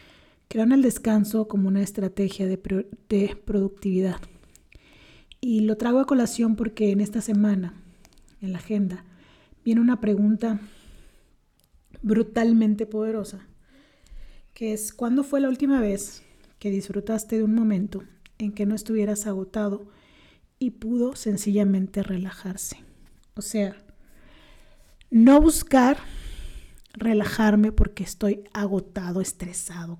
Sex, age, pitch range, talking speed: female, 40-59, 195-225 Hz, 110 wpm